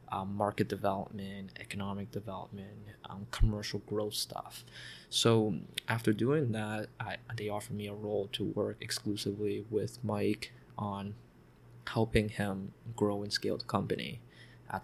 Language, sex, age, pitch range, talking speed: English, male, 20-39, 100-115 Hz, 130 wpm